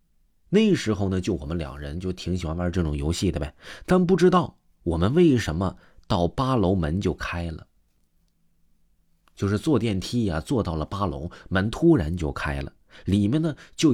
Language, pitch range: Chinese, 80-125 Hz